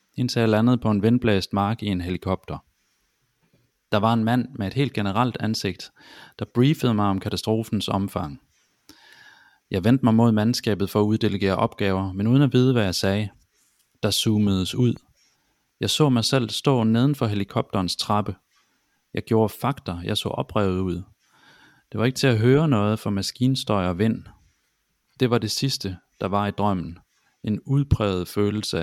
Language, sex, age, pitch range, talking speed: Danish, male, 30-49, 95-120 Hz, 165 wpm